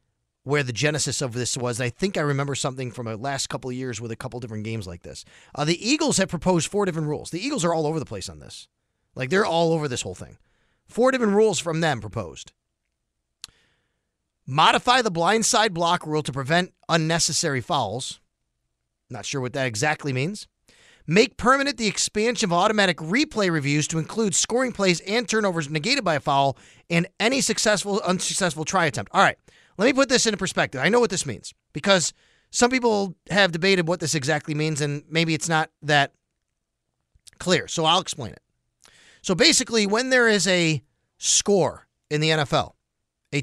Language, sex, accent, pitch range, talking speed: English, male, American, 135-195 Hz, 190 wpm